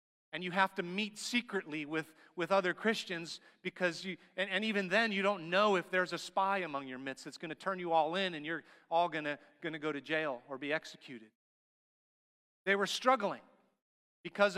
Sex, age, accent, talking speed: male, 30-49, American, 200 wpm